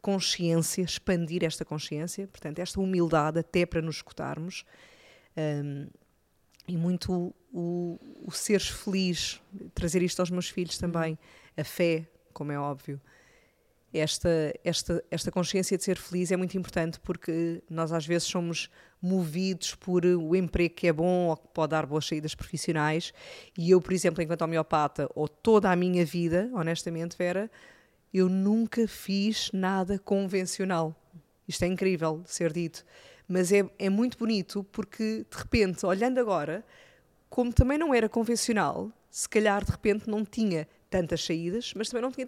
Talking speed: 155 wpm